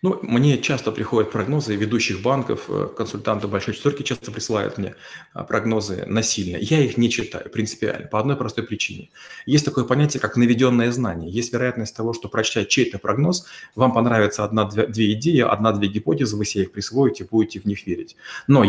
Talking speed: 165 wpm